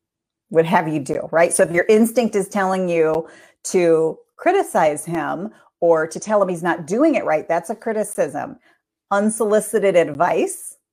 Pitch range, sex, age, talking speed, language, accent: 165-210 Hz, female, 40-59, 160 wpm, English, American